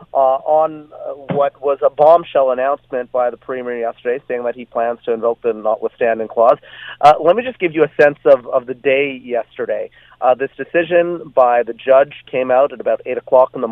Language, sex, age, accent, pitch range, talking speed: English, male, 30-49, American, 120-155 Hz, 210 wpm